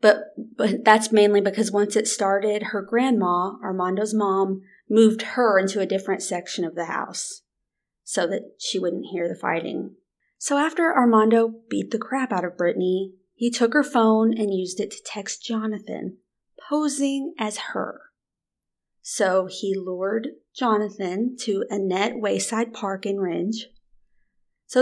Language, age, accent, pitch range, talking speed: English, 30-49, American, 195-235 Hz, 145 wpm